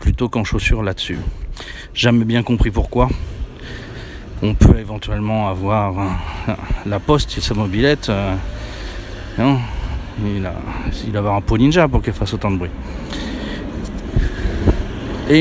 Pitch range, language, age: 90-130 Hz, French, 40-59